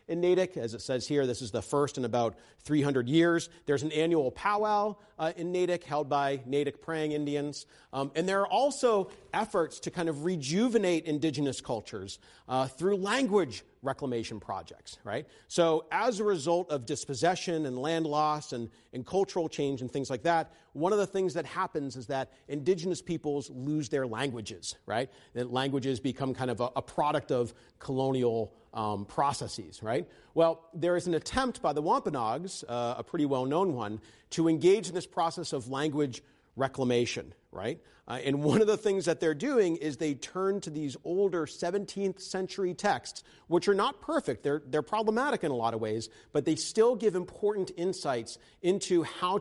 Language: English